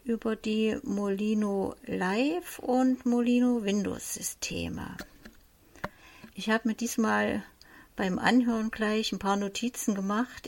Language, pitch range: German, 210-250 Hz